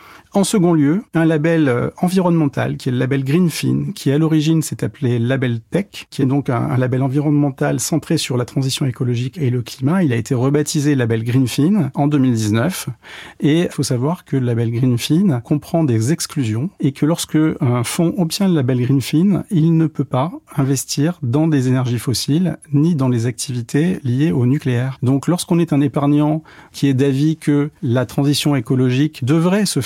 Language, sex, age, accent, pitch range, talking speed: French, male, 40-59, French, 125-155 Hz, 185 wpm